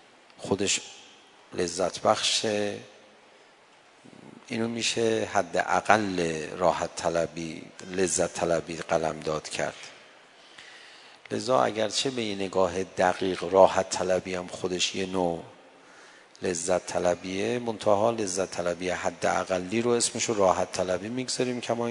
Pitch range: 95-110 Hz